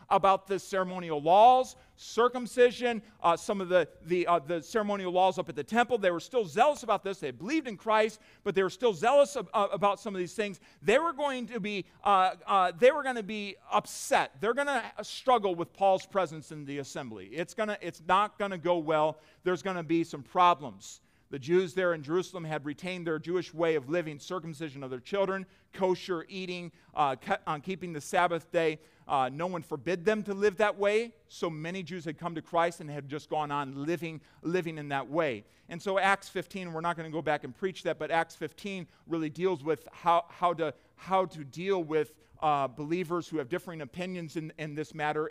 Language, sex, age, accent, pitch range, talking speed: English, male, 40-59, American, 155-195 Hz, 215 wpm